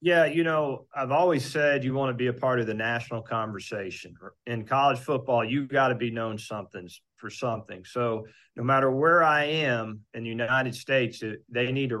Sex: male